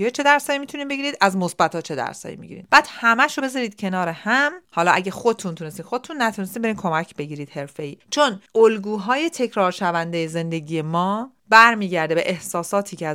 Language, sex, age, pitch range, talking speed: Persian, female, 40-59, 160-220 Hz, 170 wpm